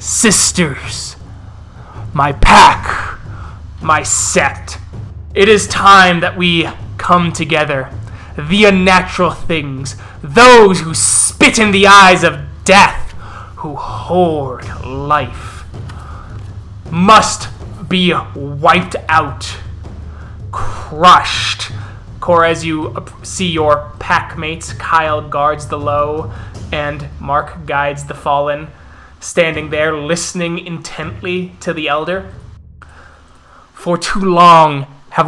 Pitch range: 105-170 Hz